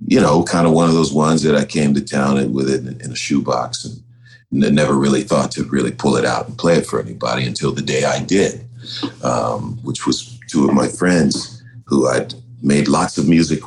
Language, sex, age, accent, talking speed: English, male, 50-69, American, 225 wpm